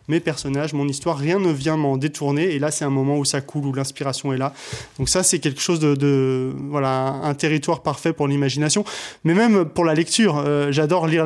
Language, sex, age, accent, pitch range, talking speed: French, male, 20-39, French, 140-165 Hz, 225 wpm